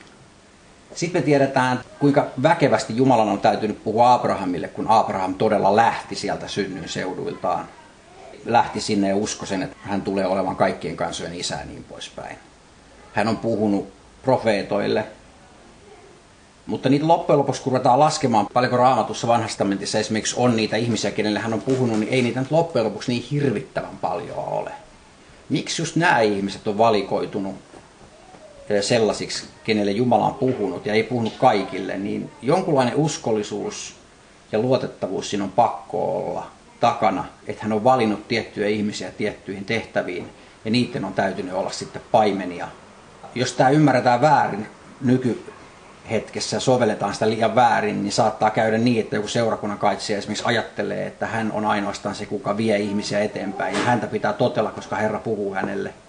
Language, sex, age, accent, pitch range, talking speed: Finnish, male, 30-49, native, 105-130 Hz, 150 wpm